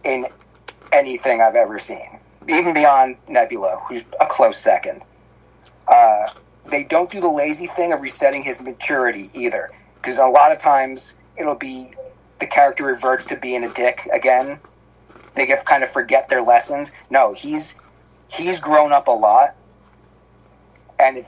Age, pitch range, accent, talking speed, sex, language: 40-59, 125-155 Hz, American, 155 wpm, male, English